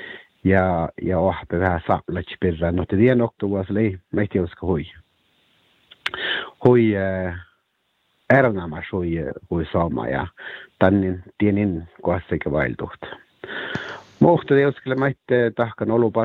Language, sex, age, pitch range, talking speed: Hungarian, male, 60-79, 90-110 Hz, 65 wpm